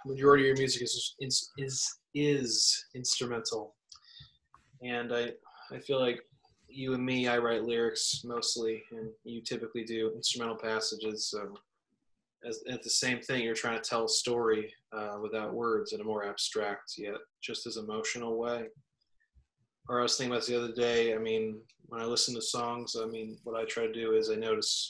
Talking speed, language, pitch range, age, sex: 185 wpm, English, 115-130 Hz, 20-39, male